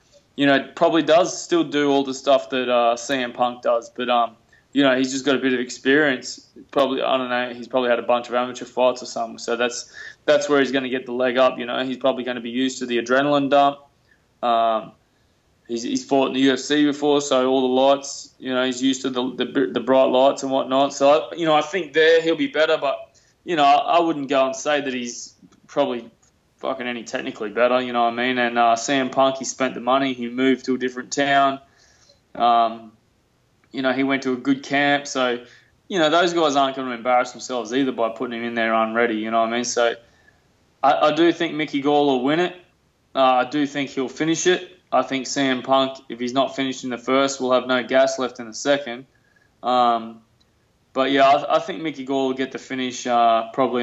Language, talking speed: English, 235 wpm